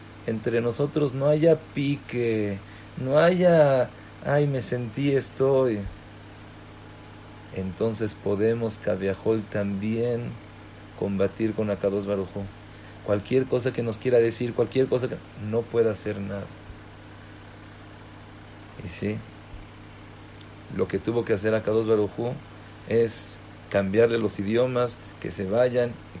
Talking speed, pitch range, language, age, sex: 110 wpm, 105-115 Hz, English, 50-69, male